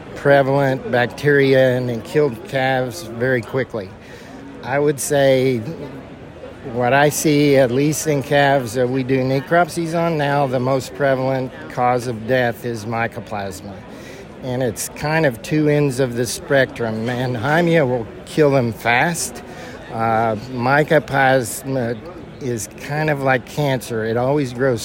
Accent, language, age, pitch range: American, English, 60-79, 120-145 Hz